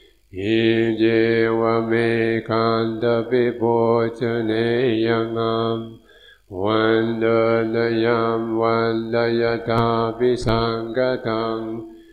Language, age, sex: English, 50-69, male